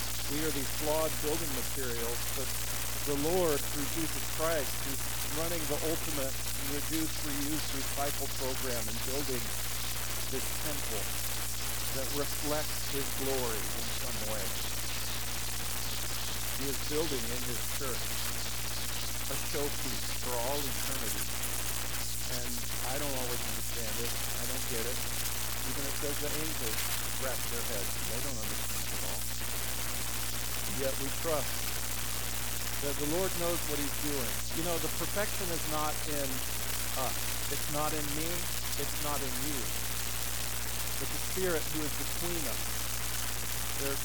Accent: American